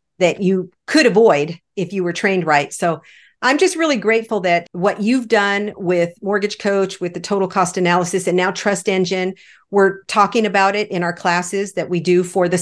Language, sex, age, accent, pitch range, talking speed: English, female, 50-69, American, 180-225 Hz, 200 wpm